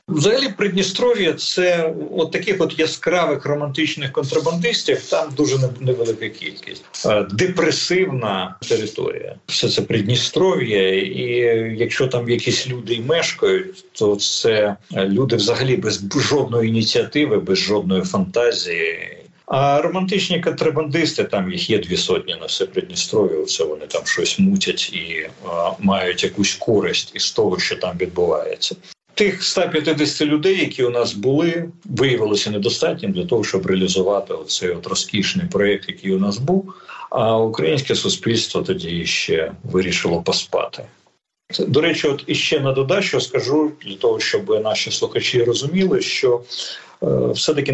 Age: 50-69